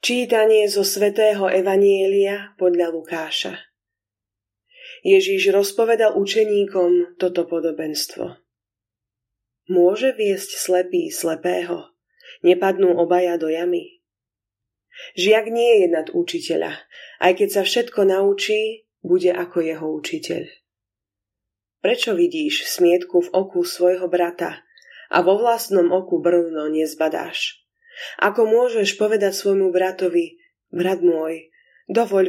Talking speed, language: 100 wpm, Slovak